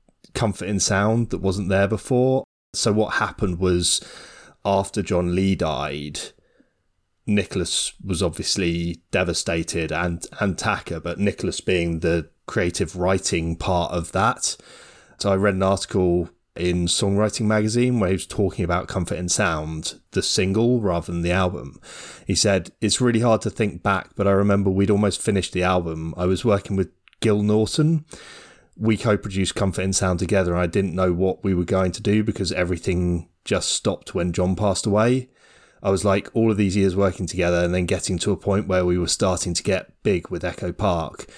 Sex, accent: male, British